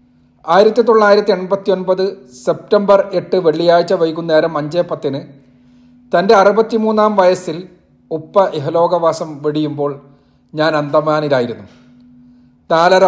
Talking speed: 85 wpm